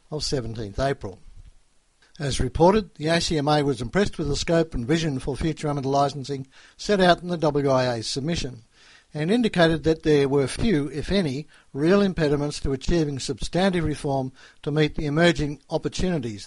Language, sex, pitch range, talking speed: English, male, 130-165 Hz, 155 wpm